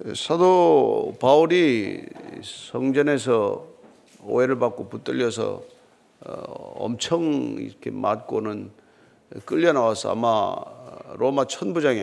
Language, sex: Korean, male